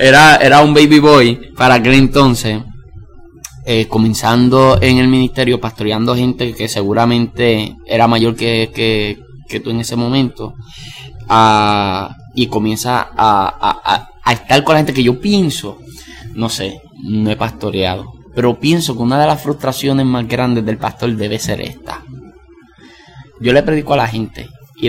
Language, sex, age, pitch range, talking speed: Spanish, male, 10-29, 110-135 Hz, 155 wpm